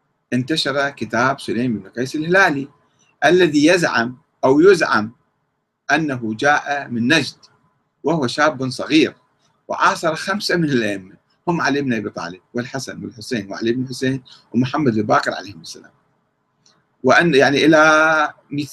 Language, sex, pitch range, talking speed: Arabic, male, 120-170 Hz, 125 wpm